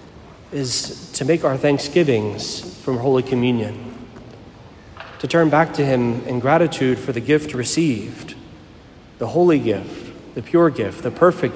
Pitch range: 120-150 Hz